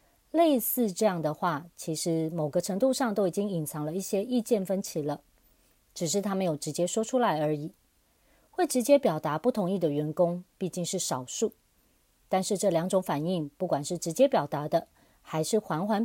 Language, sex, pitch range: Chinese, female, 160-220 Hz